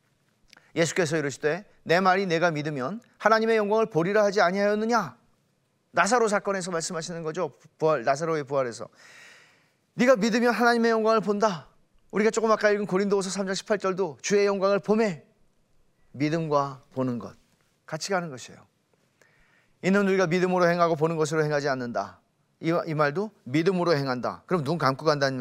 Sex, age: male, 40-59